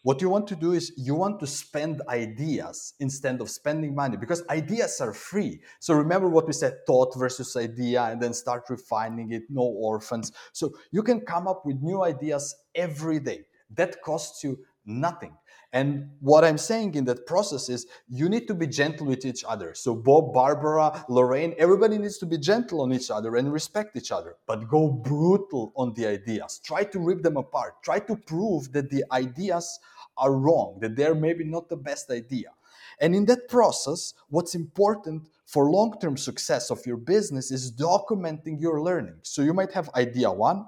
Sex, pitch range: male, 135-195 Hz